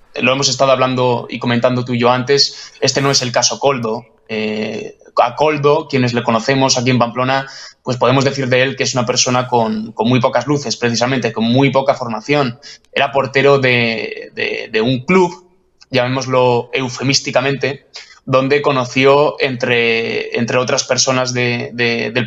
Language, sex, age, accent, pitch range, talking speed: Spanish, male, 20-39, Spanish, 125-145 Hz, 160 wpm